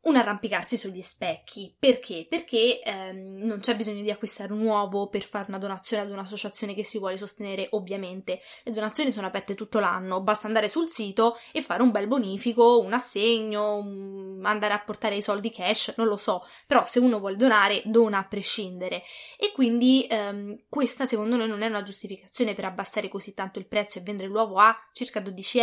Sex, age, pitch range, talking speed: female, 10-29, 205-255 Hz, 190 wpm